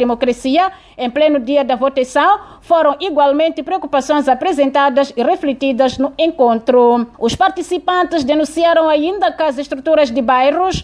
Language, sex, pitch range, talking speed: Portuguese, female, 270-335 Hz, 125 wpm